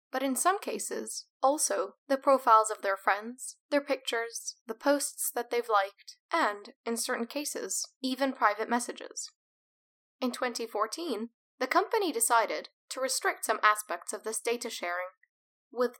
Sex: female